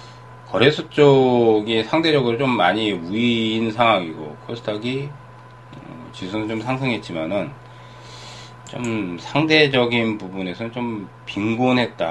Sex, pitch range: male, 95-125 Hz